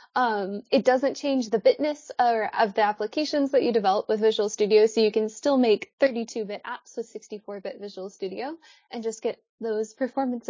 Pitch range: 215-285 Hz